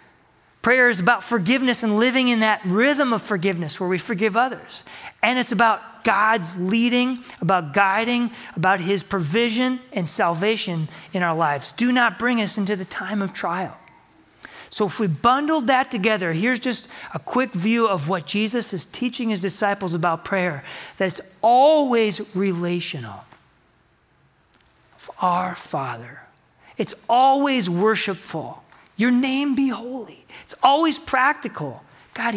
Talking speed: 140 wpm